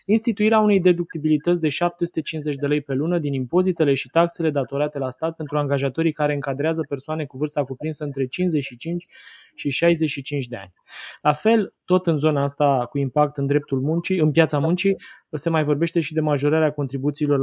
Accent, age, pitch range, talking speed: native, 20-39, 140-165 Hz, 175 wpm